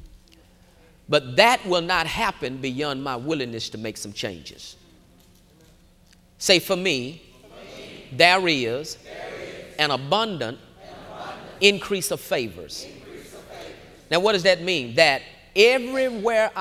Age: 40-59